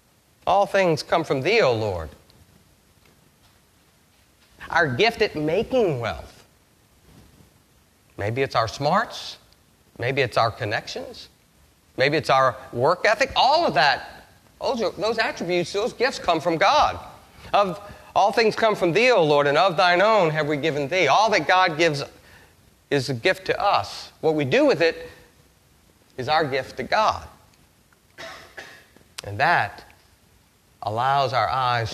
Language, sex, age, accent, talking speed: English, male, 40-59, American, 145 wpm